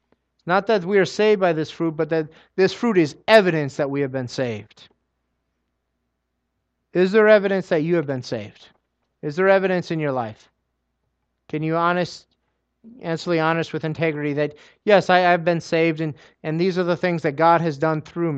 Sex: male